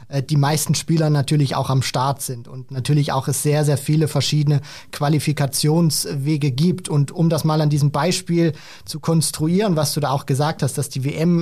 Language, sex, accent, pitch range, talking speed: German, male, German, 150-185 Hz, 190 wpm